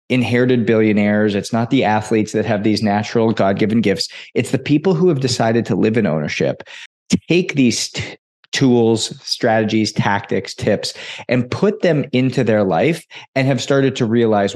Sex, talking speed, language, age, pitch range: male, 160 wpm, English, 30-49, 110-135 Hz